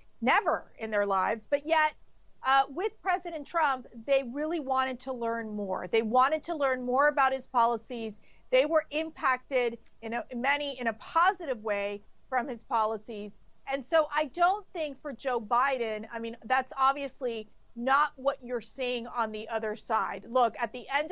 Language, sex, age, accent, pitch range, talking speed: English, female, 40-59, American, 230-275 Hz, 175 wpm